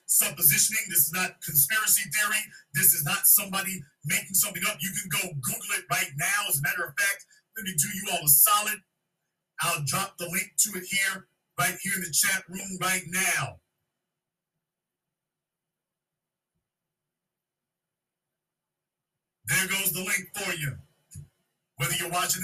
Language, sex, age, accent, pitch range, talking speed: English, male, 50-69, American, 155-190 Hz, 150 wpm